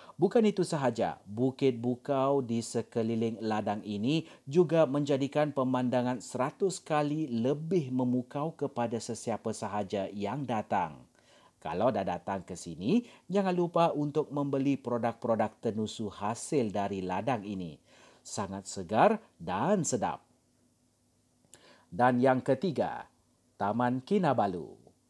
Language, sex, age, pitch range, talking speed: Malay, male, 40-59, 115-150 Hz, 110 wpm